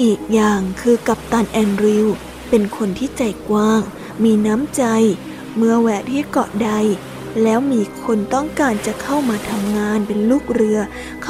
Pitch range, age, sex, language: 215-245 Hz, 20-39, female, Thai